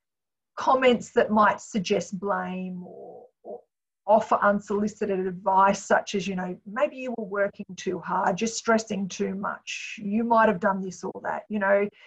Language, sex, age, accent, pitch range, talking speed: English, female, 50-69, Australian, 195-230 Hz, 165 wpm